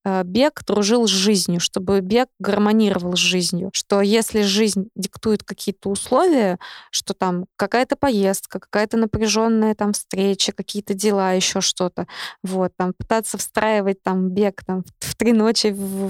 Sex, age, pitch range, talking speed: female, 20-39, 185-215 Hz, 140 wpm